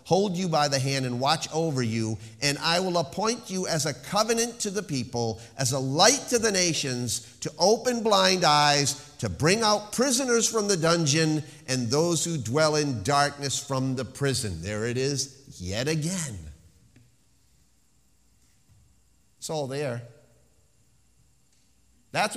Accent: American